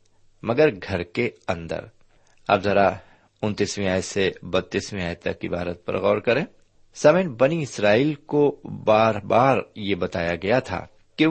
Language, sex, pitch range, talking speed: Urdu, male, 95-125 Hz, 125 wpm